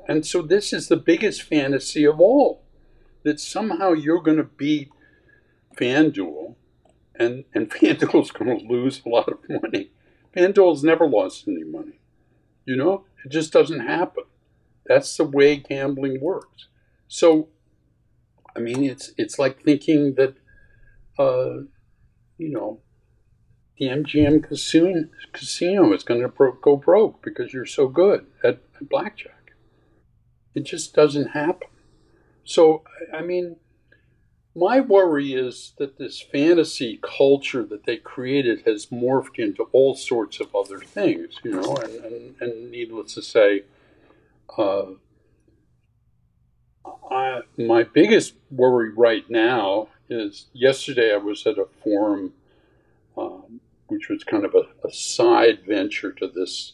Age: 60-79